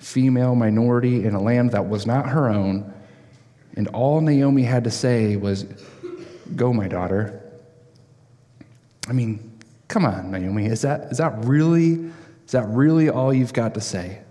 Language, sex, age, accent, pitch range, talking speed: English, male, 30-49, American, 110-135 Hz, 160 wpm